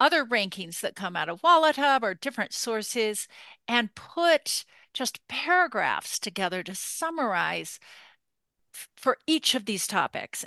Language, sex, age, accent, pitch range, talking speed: English, female, 40-59, American, 200-275 Hz, 130 wpm